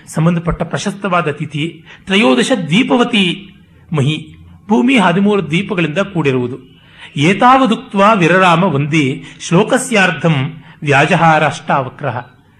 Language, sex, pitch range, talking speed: Kannada, male, 150-195 Hz, 80 wpm